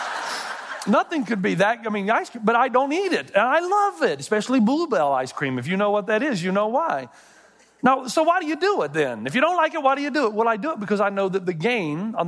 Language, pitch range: English, 140-220 Hz